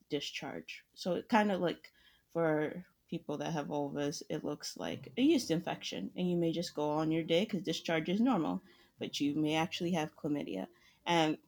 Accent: American